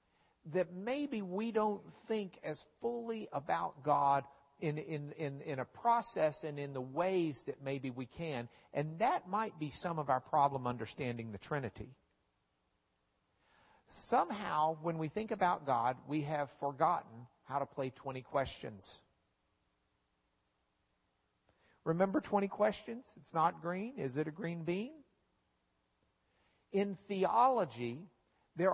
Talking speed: 130 wpm